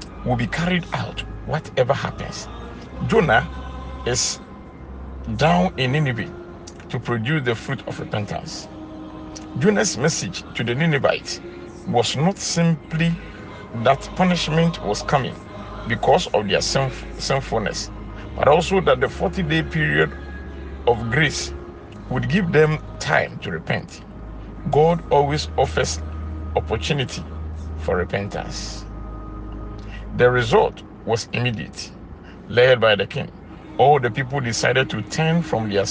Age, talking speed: 50-69, 115 wpm